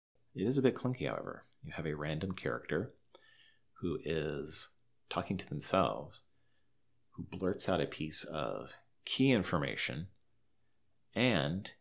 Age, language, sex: 30-49, English, male